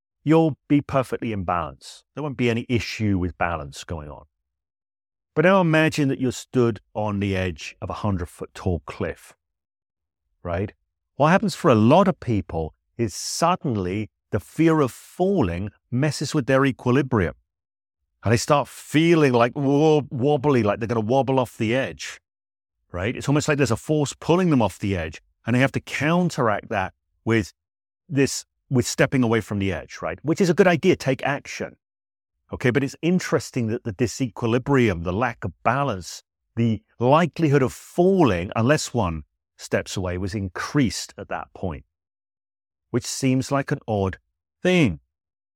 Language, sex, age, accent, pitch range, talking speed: English, male, 40-59, British, 90-140 Hz, 165 wpm